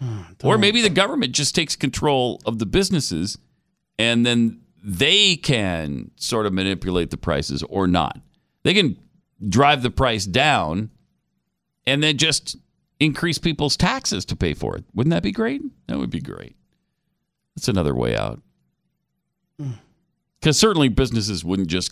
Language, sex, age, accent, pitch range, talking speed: English, male, 40-59, American, 95-150 Hz, 150 wpm